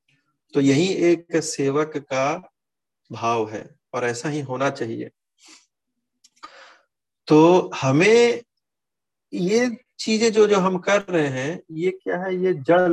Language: Hindi